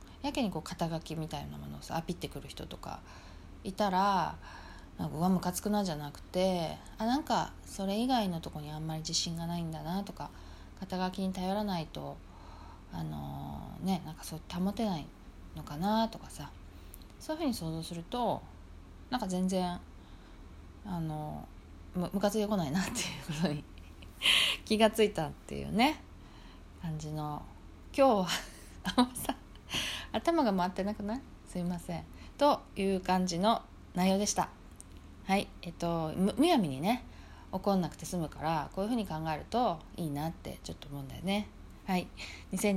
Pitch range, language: 150-205 Hz, Japanese